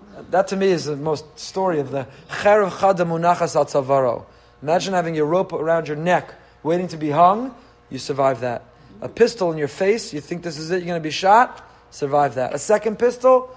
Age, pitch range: 30-49, 155-205 Hz